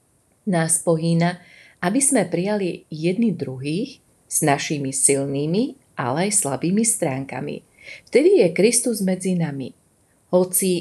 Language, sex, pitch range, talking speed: Slovak, female, 150-190 Hz, 110 wpm